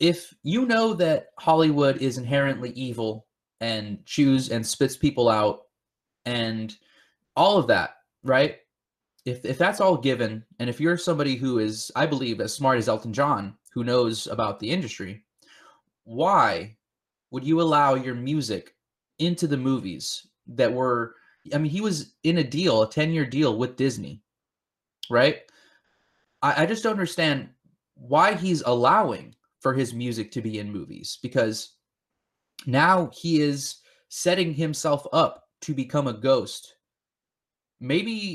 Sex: male